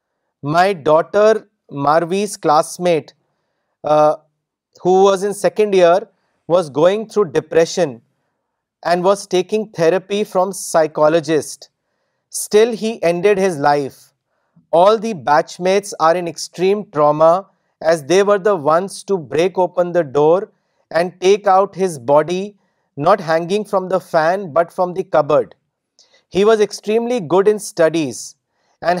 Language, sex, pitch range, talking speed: Urdu, male, 160-200 Hz, 130 wpm